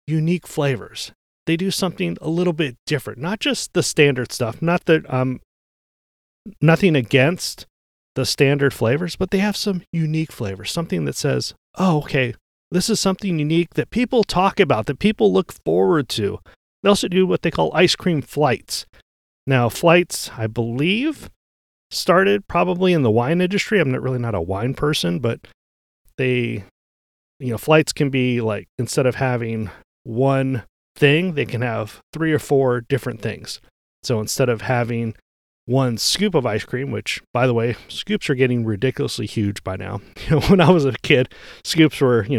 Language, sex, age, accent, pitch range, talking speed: English, male, 30-49, American, 115-170 Hz, 170 wpm